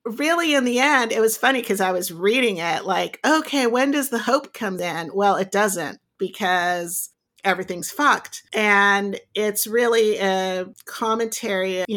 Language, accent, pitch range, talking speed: English, American, 185-240 Hz, 160 wpm